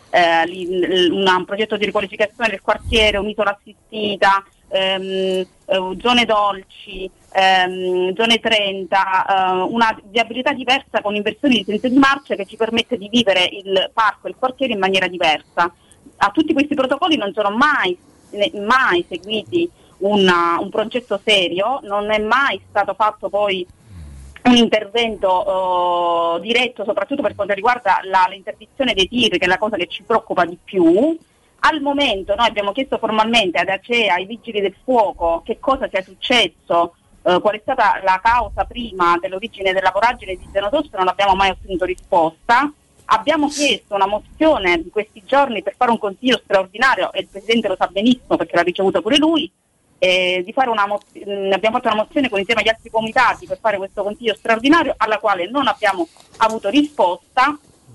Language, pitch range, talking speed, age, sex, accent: Italian, 190-250 Hz, 160 wpm, 30-49, female, native